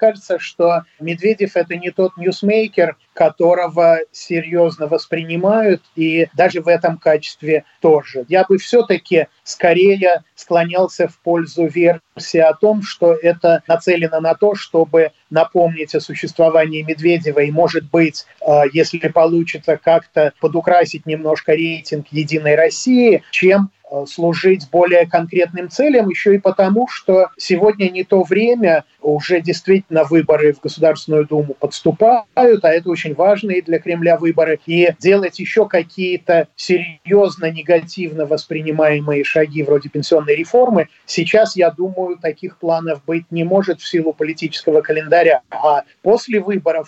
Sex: male